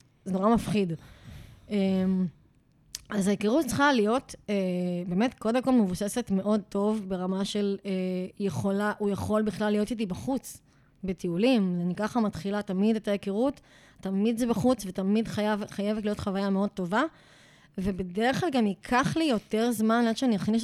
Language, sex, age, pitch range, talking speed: Hebrew, female, 20-39, 190-225 Hz, 140 wpm